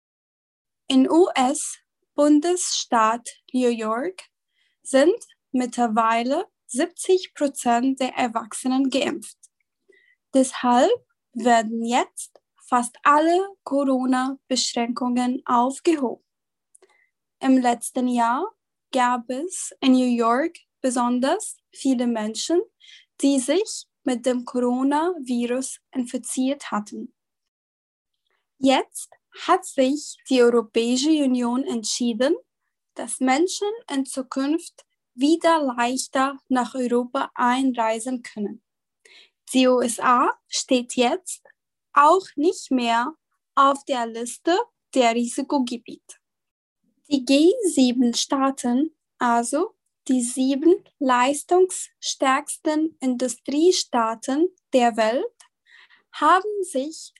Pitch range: 245-330 Hz